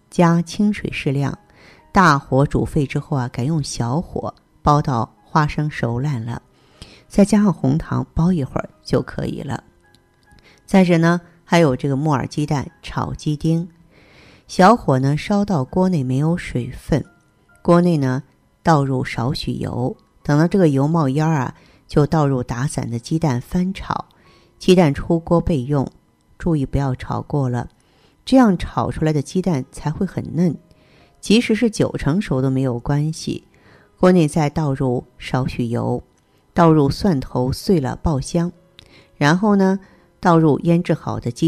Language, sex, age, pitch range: Chinese, female, 50-69, 130-170 Hz